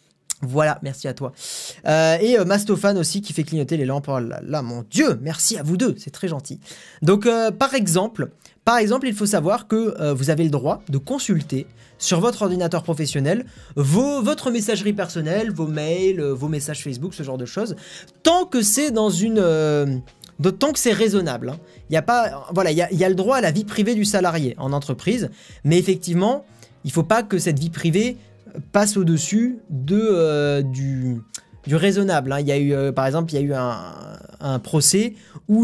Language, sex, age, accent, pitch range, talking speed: French, male, 20-39, French, 145-205 Hz, 205 wpm